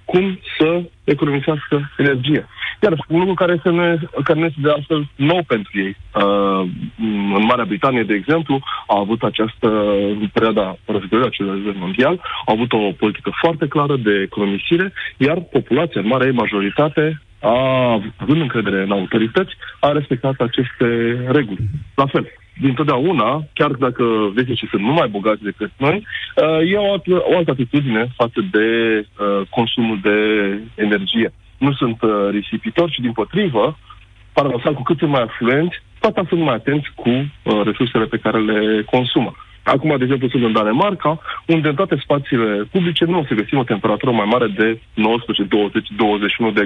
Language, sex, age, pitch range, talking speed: Romanian, male, 30-49, 105-150 Hz, 150 wpm